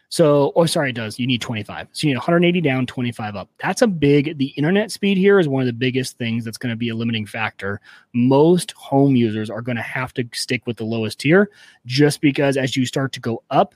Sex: male